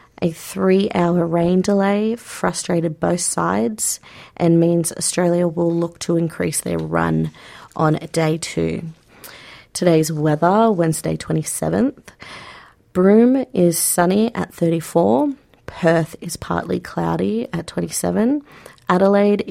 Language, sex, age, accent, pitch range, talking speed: English, female, 30-49, Australian, 165-215 Hz, 110 wpm